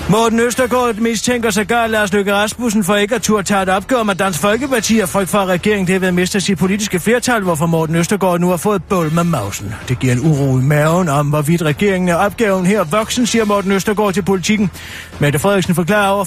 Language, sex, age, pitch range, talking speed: Danish, male, 40-59, 160-205 Hz, 220 wpm